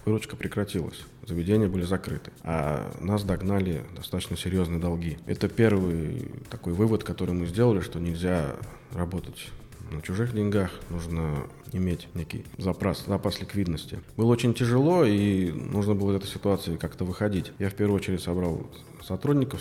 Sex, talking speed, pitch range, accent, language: male, 145 wpm, 90-115 Hz, native, Russian